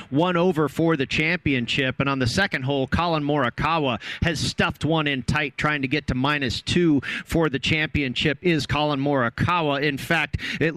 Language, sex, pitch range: English, male, 145-175 Hz